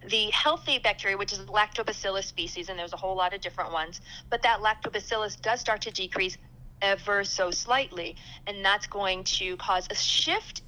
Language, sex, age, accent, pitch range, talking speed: English, female, 40-59, American, 190-255 Hz, 180 wpm